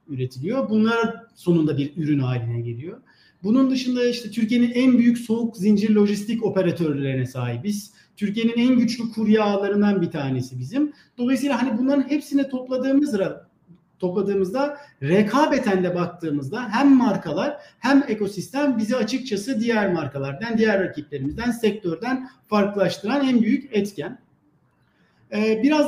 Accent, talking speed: native, 115 wpm